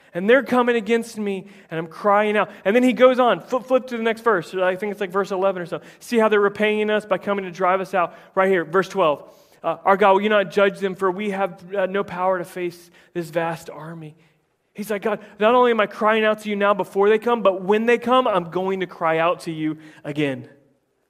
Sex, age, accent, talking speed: male, 30-49, American, 250 wpm